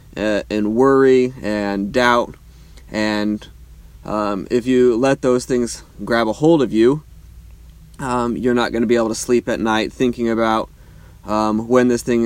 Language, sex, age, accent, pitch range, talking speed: English, male, 20-39, American, 100-125 Hz, 160 wpm